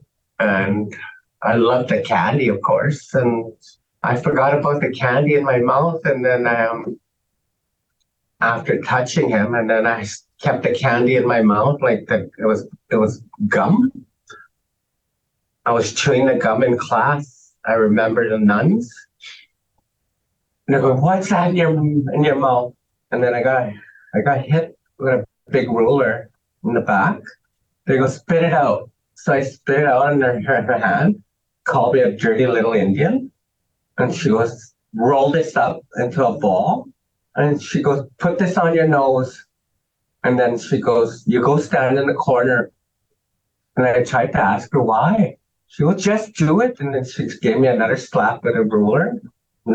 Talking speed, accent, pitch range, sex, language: 170 wpm, American, 120-175 Hz, male, English